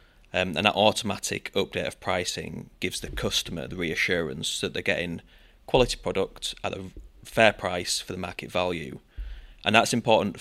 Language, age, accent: English, 20-39, British